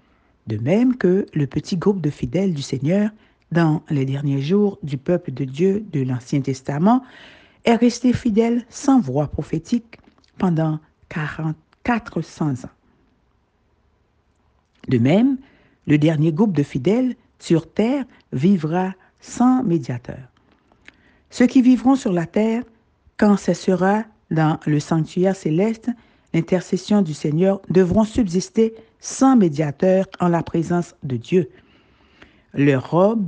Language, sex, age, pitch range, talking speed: French, female, 60-79, 145-205 Hz, 125 wpm